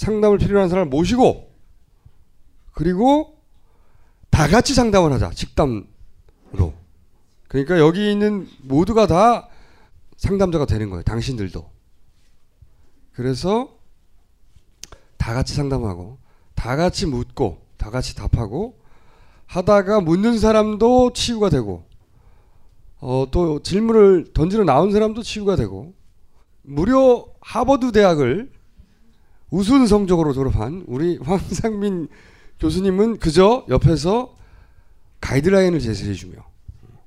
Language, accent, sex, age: Korean, native, male, 30-49